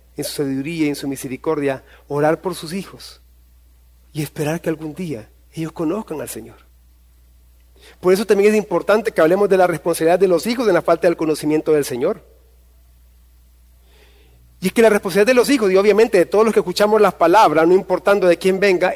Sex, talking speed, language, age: male, 195 wpm, Spanish, 40-59